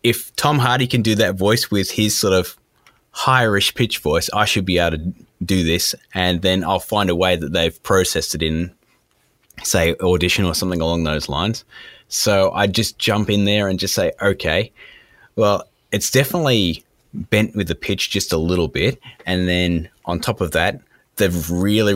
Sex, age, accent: male, 20-39, Australian